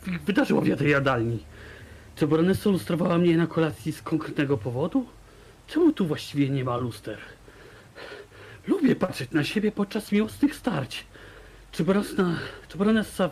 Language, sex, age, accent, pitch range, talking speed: Polish, male, 40-59, native, 160-250 Hz, 120 wpm